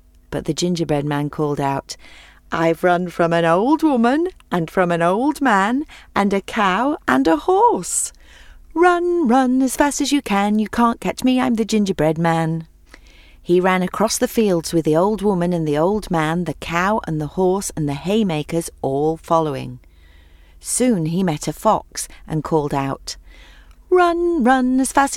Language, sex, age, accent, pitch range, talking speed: English, female, 40-59, British, 145-215 Hz, 175 wpm